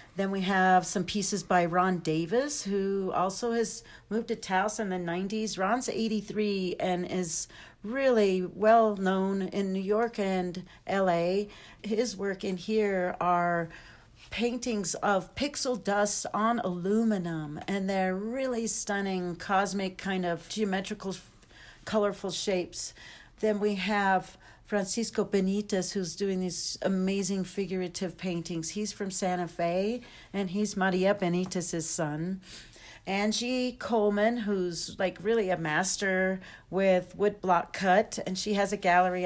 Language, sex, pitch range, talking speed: English, female, 180-205 Hz, 130 wpm